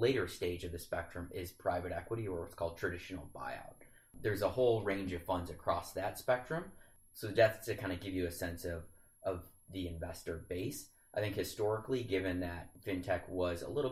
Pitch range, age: 90-110 Hz, 30-49